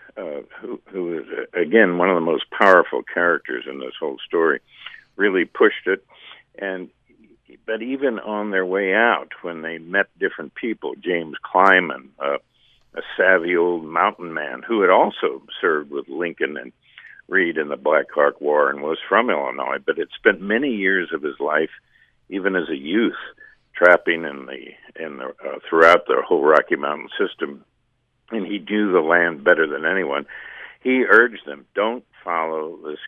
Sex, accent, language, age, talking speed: male, American, English, 60-79, 170 wpm